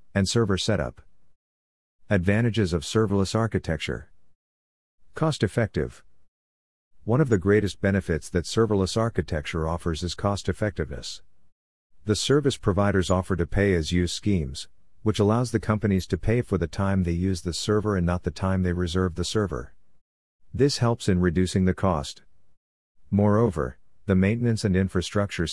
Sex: male